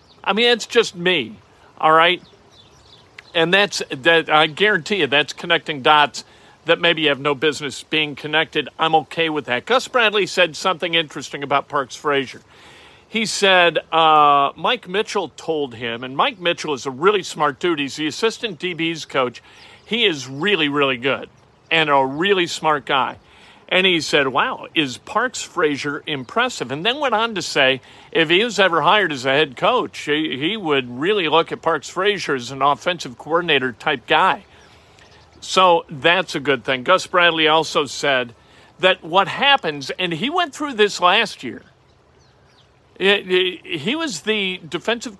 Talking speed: 165 wpm